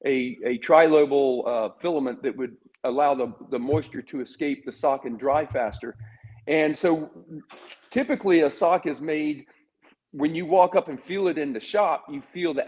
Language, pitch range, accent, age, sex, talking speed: English, 140-185 Hz, American, 40-59, male, 180 wpm